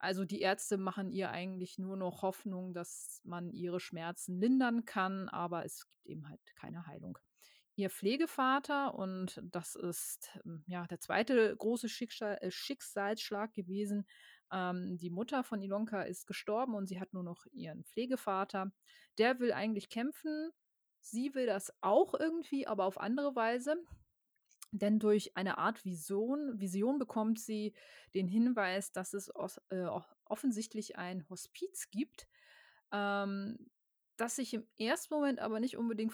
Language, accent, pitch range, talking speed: German, German, 190-240 Hz, 140 wpm